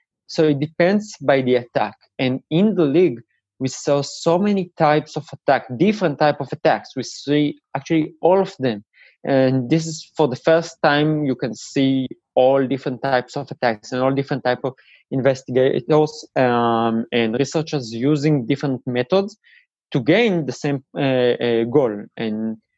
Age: 20-39